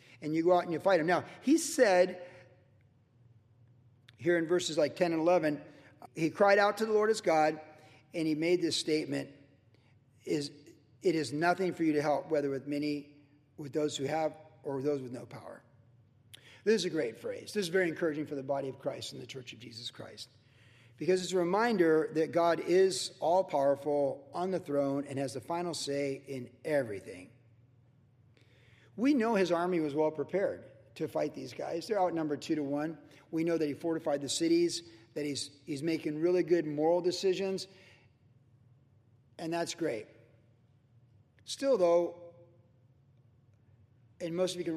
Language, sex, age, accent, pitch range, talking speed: English, male, 50-69, American, 130-170 Hz, 175 wpm